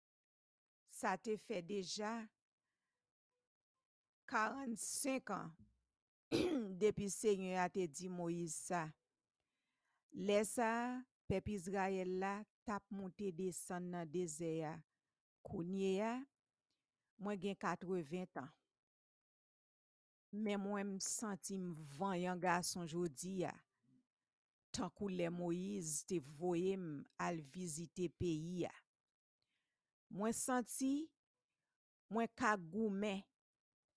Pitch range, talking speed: 175-215 Hz, 95 wpm